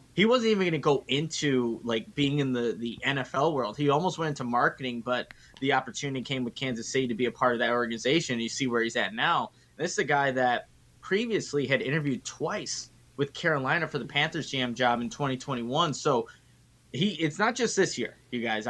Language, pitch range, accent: English, 125-155 Hz, American